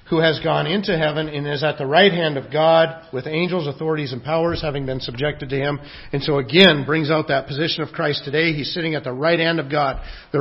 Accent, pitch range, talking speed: American, 145-170 Hz, 240 wpm